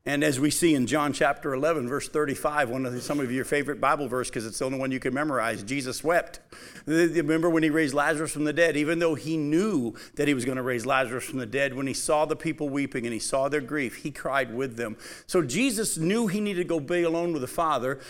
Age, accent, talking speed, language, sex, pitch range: 50-69, American, 255 wpm, English, male, 130-170 Hz